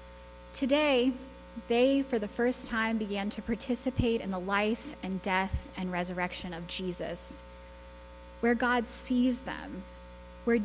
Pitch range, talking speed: 165-235 Hz, 130 wpm